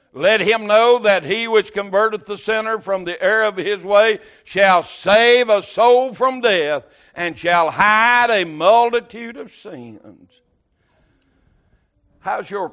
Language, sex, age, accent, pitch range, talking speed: English, male, 60-79, American, 185-230 Hz, 140 wpm